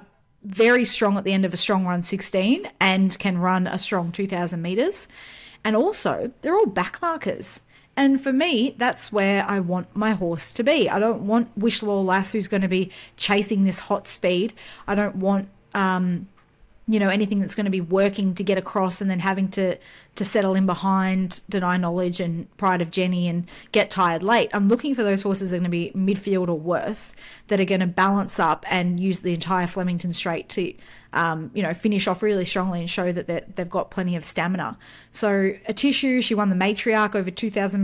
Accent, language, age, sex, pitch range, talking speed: Australian, English, 30-49, female, 185-210 Hz, 205 wpm